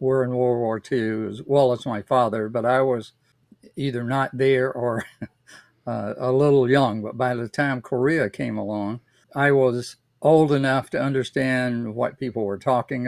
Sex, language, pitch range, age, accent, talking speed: male, English, 115-130 Hz, 50-69, American, 175 wpm